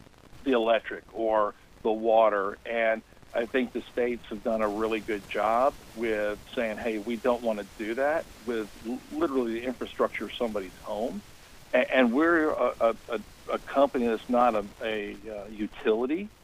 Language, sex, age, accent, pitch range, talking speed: English, male, 50-69, American, 105-125 Hz, 160 wpm